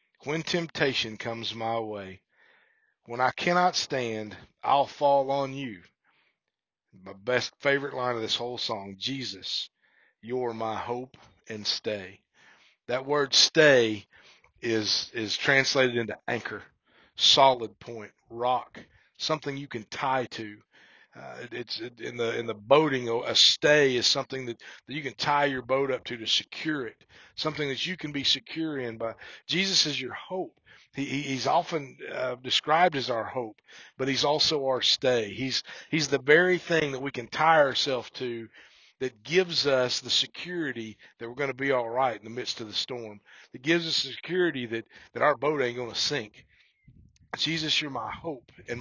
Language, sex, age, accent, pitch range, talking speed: English, male, 40-59, American, 115-150 Hz, 170 wpm